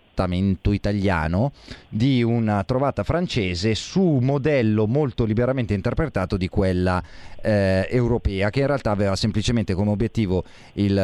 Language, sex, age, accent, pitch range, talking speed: Italian, male, 30-49, native, 95-120 Hz, 120 wpm